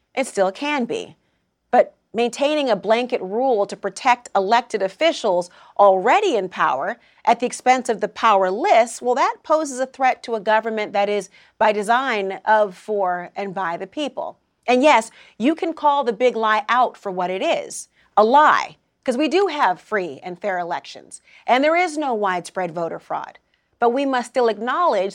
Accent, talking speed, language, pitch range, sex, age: American, 180 wpm, English, 200-270 Hz, female, 40-59